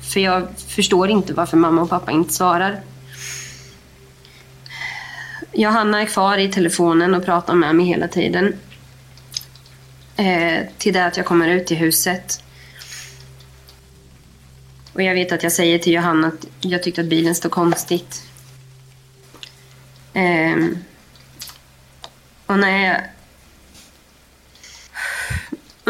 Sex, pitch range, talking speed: female, 145-235 Hz, 115 wpm